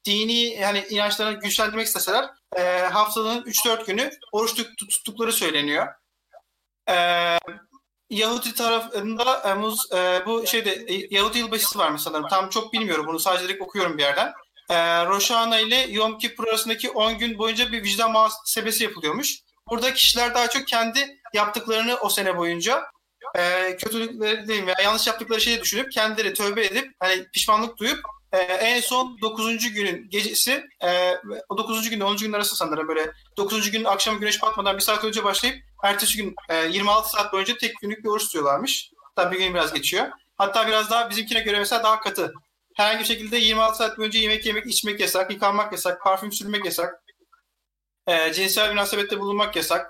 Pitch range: 190-230 Hz